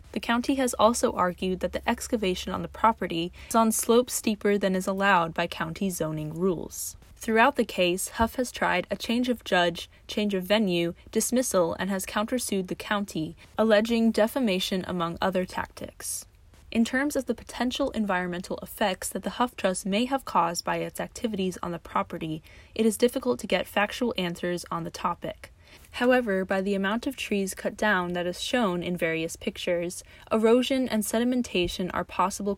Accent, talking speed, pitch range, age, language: American, 175 wpm, 175-230 Hz, 20-39, English